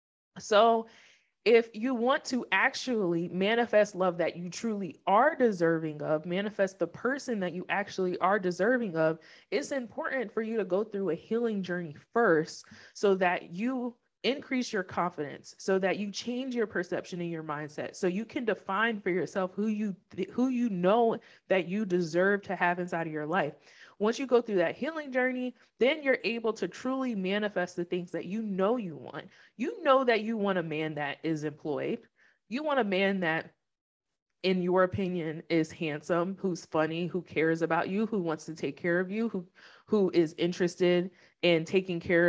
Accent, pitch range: American, 175-235 Hz